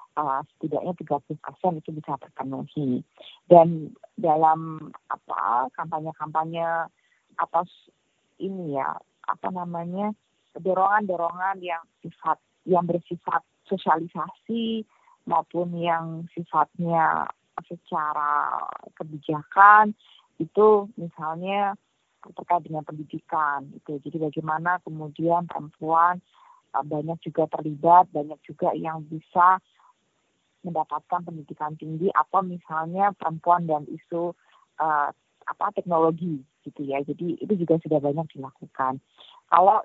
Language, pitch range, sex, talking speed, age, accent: Indonesian, 155-185 Hz, female, 95 wpm, 30-49, native